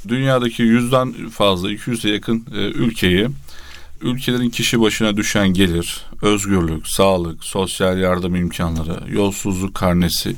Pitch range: 95-120 Hz